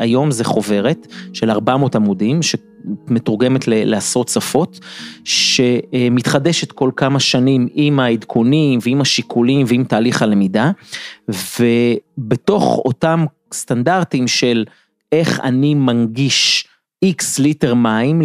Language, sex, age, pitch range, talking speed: Hebrew, male, 30-49, 120-155 Hz, 100 wpm